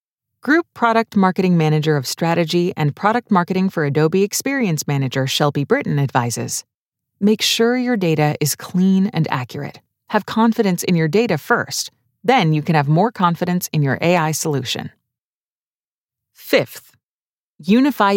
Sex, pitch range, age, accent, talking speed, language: female, 155-220 Hz, 30-49, American, 140 wpm, English